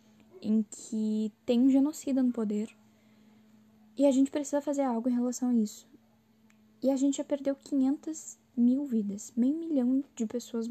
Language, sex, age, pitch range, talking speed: Portuguese, female, 10-29, 220-265 Hz, 165 wpm